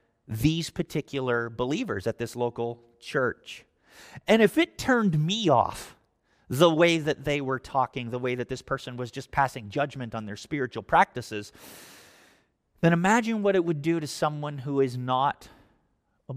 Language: English